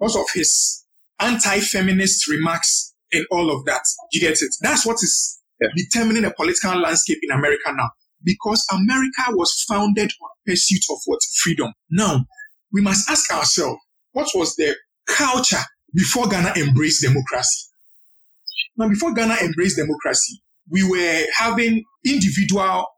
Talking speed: 135 wpm